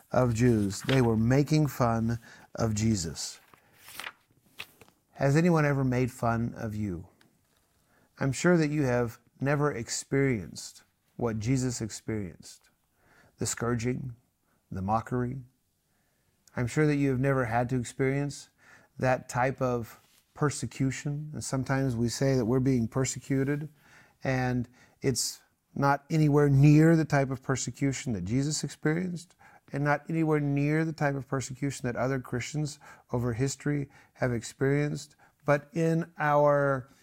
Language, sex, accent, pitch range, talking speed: English, male, American, 120-145 Hz, 130 wpm